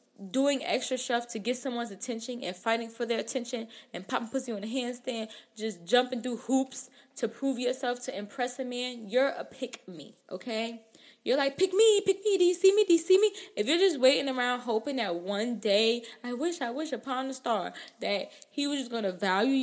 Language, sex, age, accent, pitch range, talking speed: English, female, 10-29, American, 225-275 Hz, 215 wpm